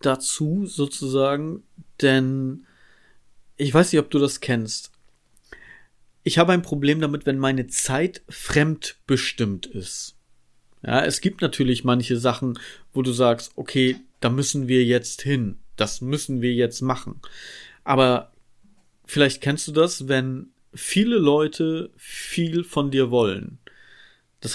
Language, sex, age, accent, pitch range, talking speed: German, male, 40-59, German, 130-155 Hz, 130 wpm